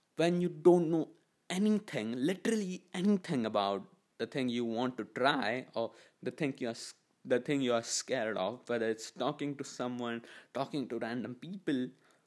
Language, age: English, 20-39